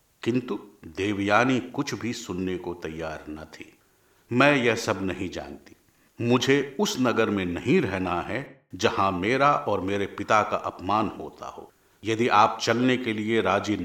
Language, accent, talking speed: Hindi, native, 155 wpm